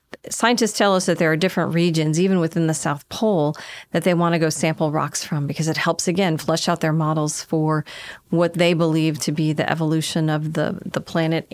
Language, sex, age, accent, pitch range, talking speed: English, female, 40-59, American, 160-185 Hz, 215 wpm